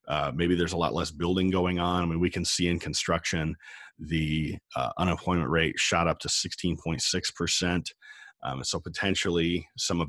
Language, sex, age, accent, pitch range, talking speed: English, male, 40-59, American, 80-95 Hz, 170 wpm